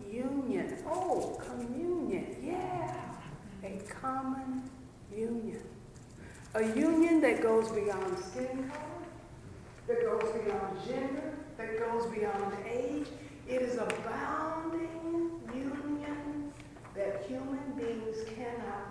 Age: 60-79